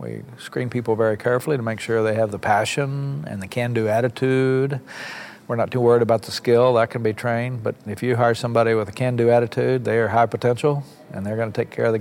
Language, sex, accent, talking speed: English, male, American, 240 wpm